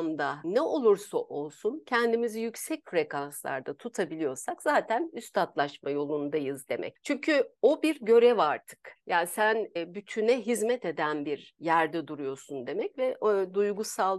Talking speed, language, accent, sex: 125 wpm, Turkish, native, female